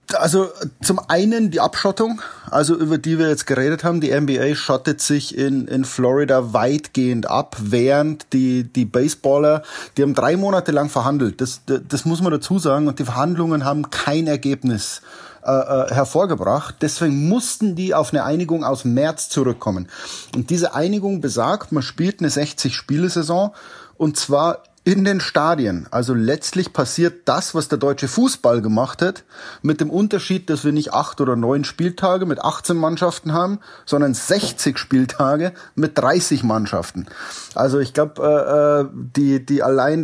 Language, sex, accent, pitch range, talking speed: German, male, German, 135-170 Hz, 155 wpm